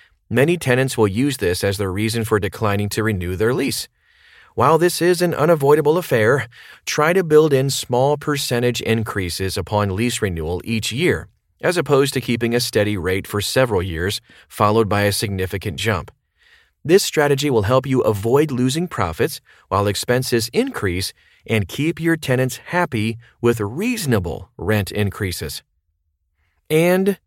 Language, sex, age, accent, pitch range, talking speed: English, male, 30-49, American, 100-135 Hz, 150 wpm